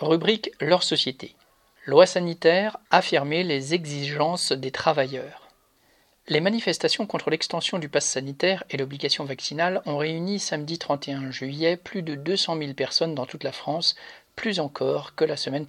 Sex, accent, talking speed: male, French, 150 wpm